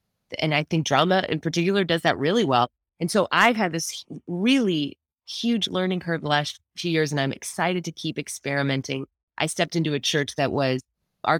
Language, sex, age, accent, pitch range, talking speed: English, female, 30-49, American, 135-170 Hz, 195 wpm